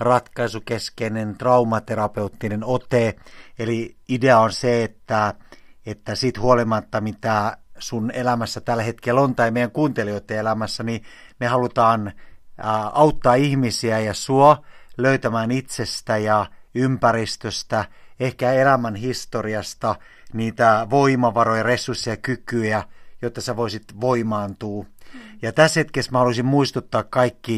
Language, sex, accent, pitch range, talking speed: Finnish, male, native, 110-130 Hz, 110 wpm